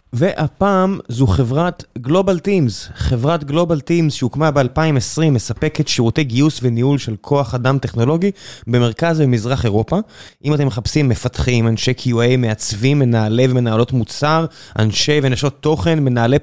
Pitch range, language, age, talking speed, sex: 120-150 Hz, Hebrew, 20-39, 130 wpm, male